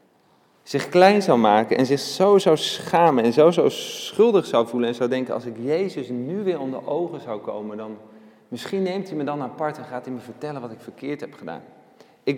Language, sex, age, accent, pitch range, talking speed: Dutch, male, 40-59, Dutch, 125-195 Hz, 220 wpm